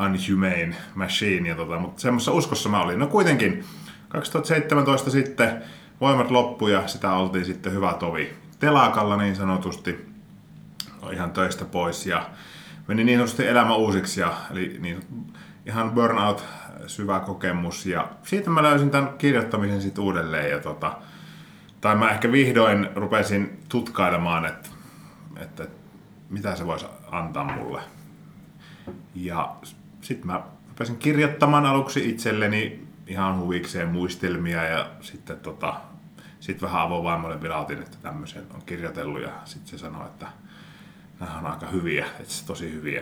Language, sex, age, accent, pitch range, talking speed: Finnish, male, 30-49, native, 95-125 Hz, 135 wpm